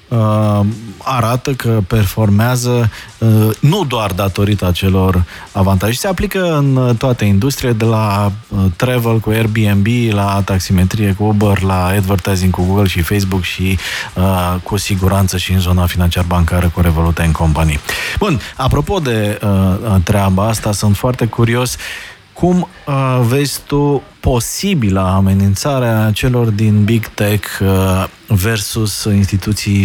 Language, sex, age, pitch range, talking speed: Romanian, male, 20-39, 95-115 Hz, 125 wpm